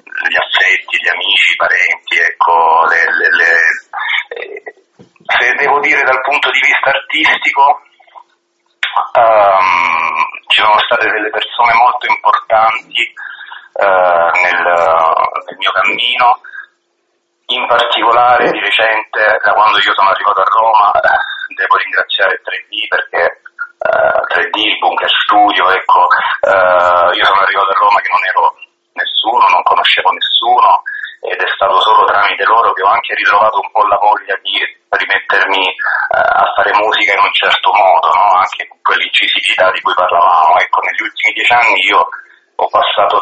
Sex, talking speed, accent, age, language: male, 145 wpm, native, 30-49, Italian